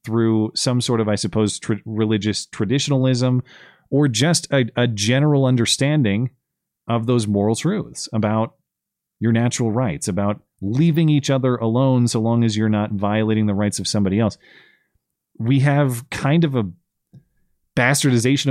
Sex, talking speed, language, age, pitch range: male, 145 wpm, English, 30-49, 110-135 Hz